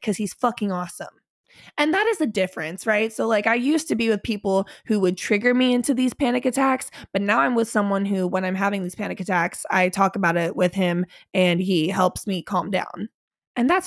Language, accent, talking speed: English, American, 225 wpm